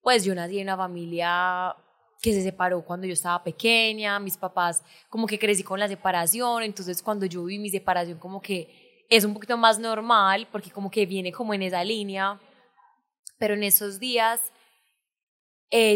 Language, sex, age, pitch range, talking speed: Spanish, female, 20-39, 195-240 Hz, 175 wpm